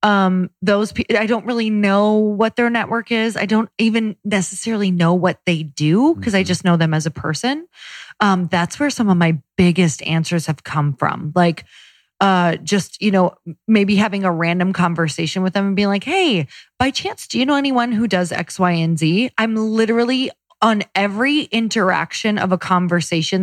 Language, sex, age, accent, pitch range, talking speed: English, female, 20-39, American, 175-225 Hz, 185 wpm